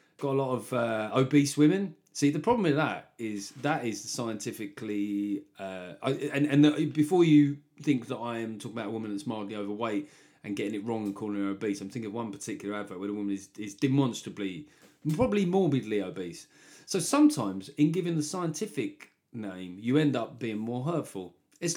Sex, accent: male, British